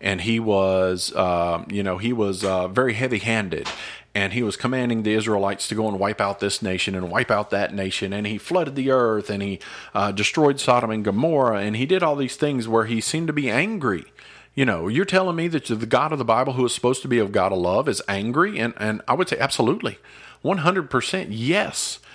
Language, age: English, 40-59